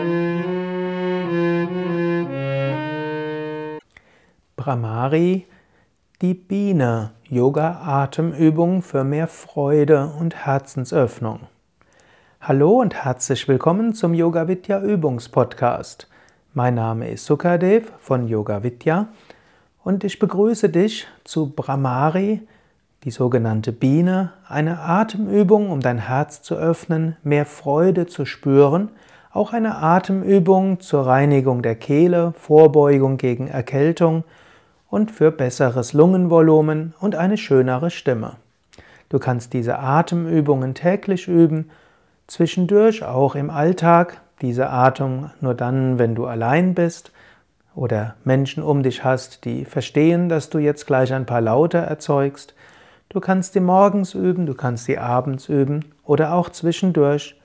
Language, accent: German, German